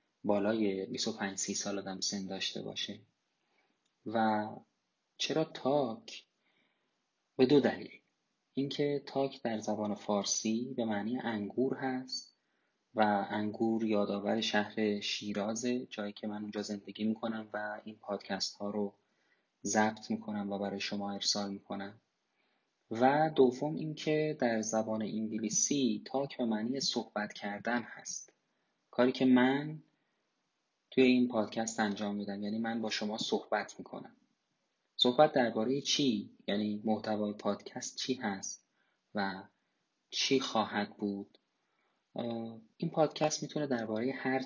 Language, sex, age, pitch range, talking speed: Persian, male, 20-39, 105-130 Hz, 120 wpm